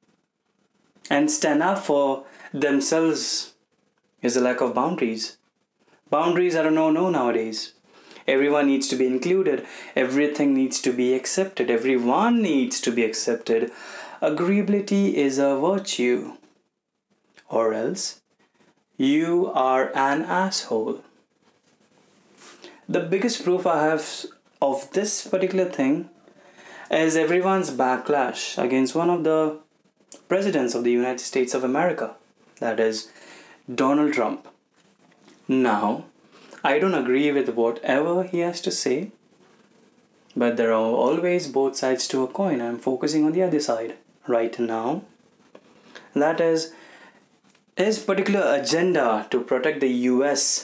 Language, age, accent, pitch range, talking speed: Hindi, 30-49, native, 130-190 Hz, 125 wpm